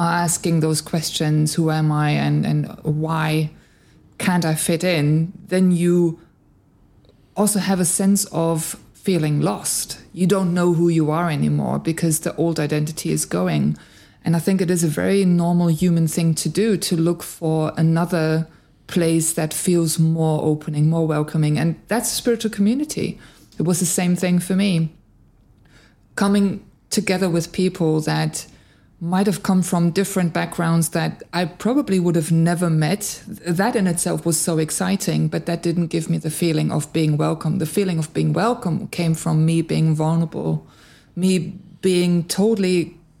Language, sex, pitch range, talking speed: English, female, 160-185 Hz, 160 wpm